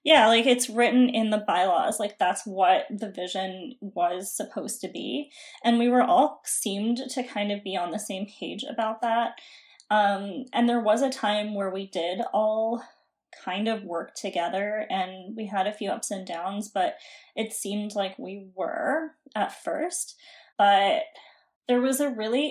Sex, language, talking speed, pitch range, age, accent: female, English, 175 wpm, 200-240 Hz, 20-39, American